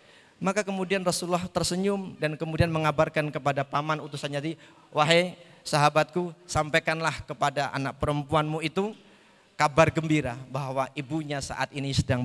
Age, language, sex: 40-59, Indonesian, male